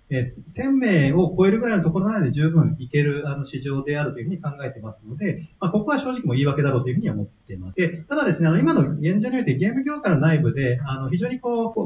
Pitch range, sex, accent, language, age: 135-190 Hz, male, native, Japanese, 40-59